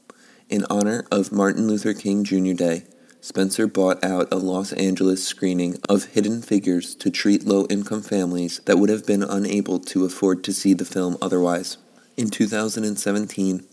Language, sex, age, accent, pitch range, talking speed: English, male, 30-49, American, 95-100 Hz, 155 wpm